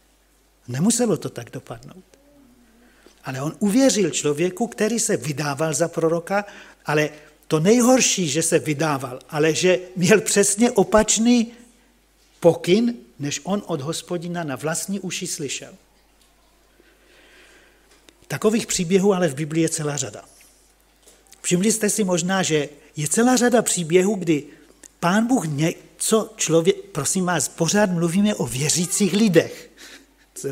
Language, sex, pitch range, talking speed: Slovak, male, 160-210 Hz, 125 wpm